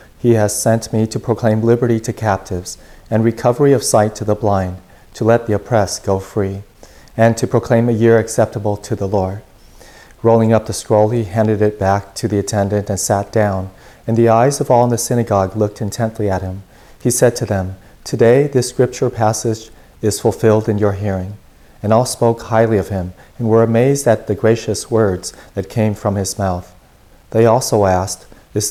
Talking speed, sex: 190 wpm, male